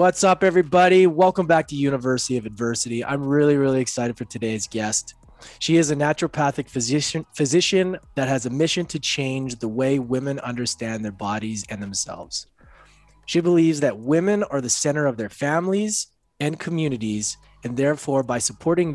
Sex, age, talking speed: male, 20-39, 165 wpm